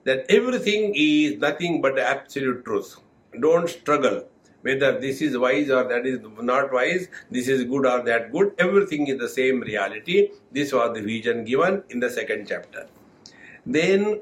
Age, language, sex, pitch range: 60-79, English, male, 130-165 Hz